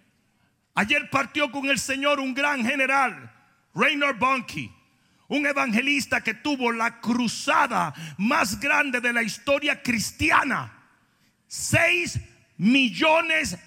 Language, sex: Spanish, male